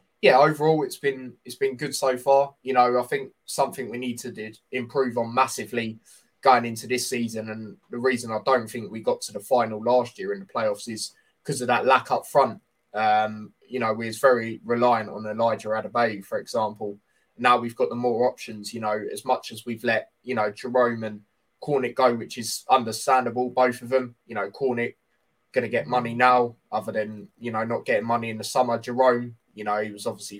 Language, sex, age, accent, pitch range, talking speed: English, male, 20-39, British, 110-130 Hz, 215 wpm